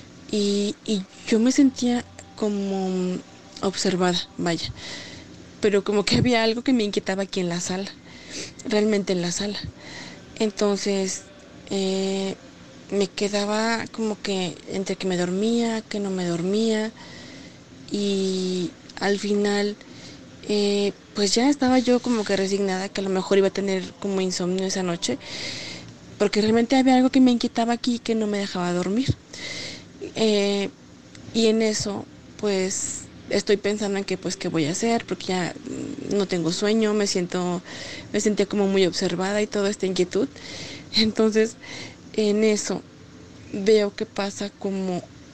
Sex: female